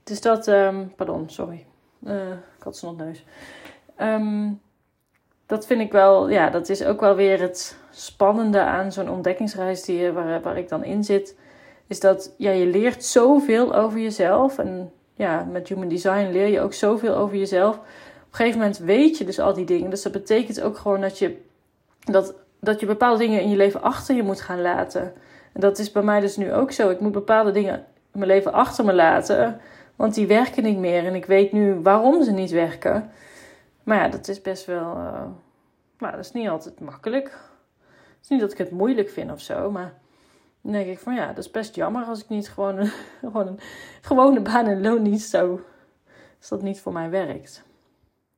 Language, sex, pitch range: Dutch, female, 195-240 Hz